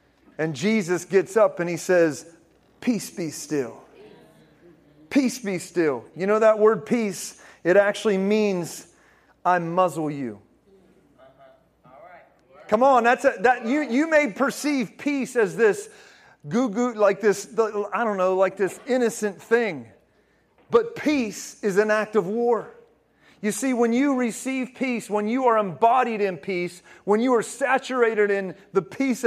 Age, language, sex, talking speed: 30-49, English, male, 150 wpm